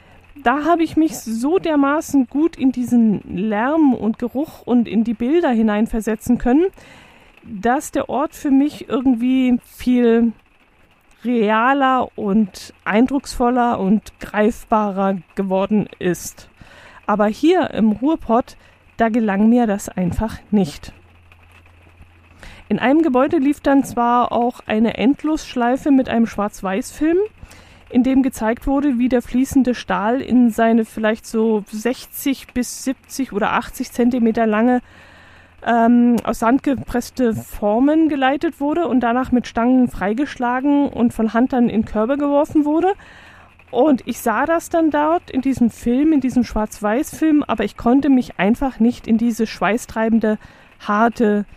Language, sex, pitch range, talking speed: German, female, 215-270 Hz, 135 wpm